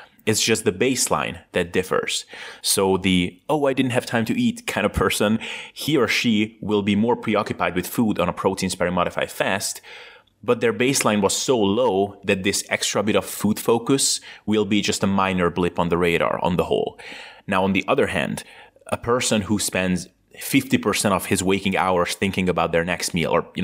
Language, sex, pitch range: English, male, 90-105 Hz